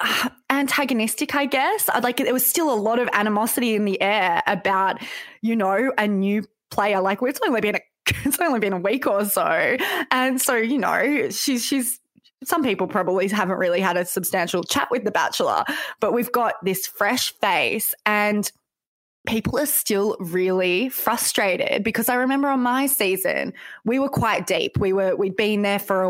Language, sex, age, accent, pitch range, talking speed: English, female, 20-39, Australian, 185-240 Hz, 185 wpm